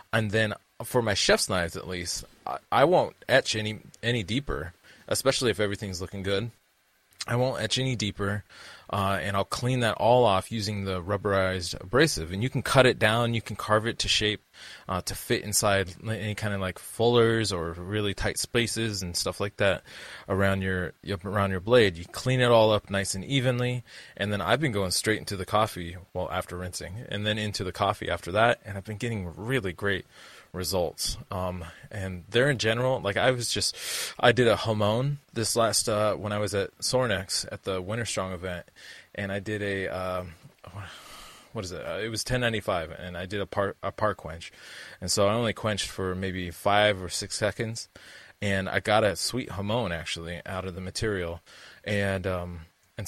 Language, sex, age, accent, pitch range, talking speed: English, male, 20-39, American, 95-110 Hz, 200 wpm